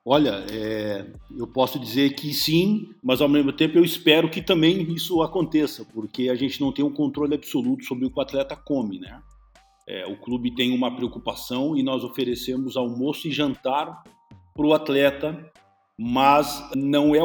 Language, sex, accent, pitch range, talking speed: Portuguese, male, Brazilian, 125-200 Hz, 175 wpm